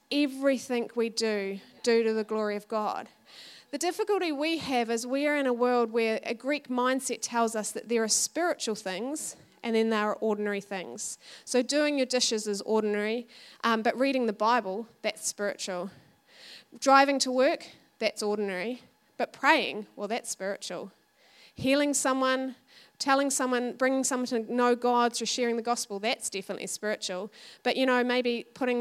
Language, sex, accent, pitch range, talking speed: English, female, Australian, 215-260 Hz, 165 wpm